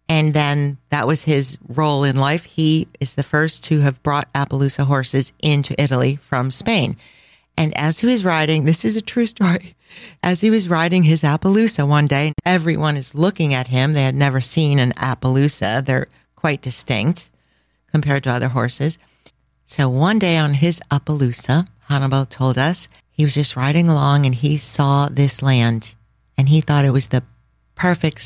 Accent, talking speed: American, 175 wpm